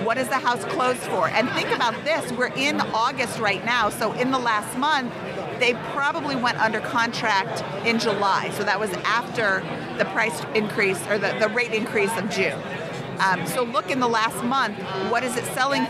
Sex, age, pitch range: female, 50-69, 210-255 Hz